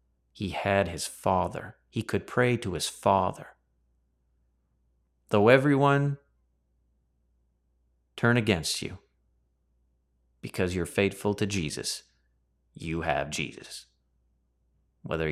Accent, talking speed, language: American, 95 wpm, English